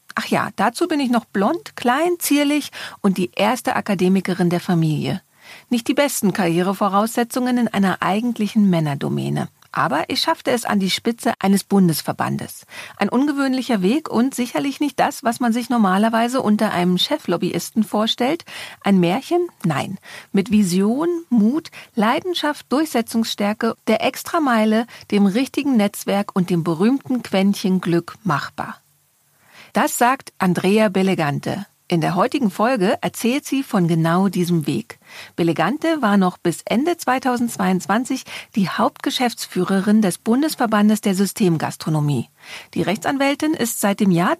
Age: 40-59